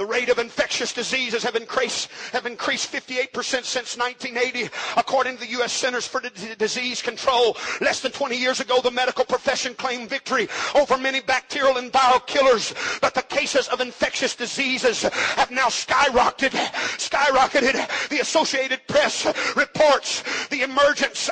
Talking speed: 145 wpm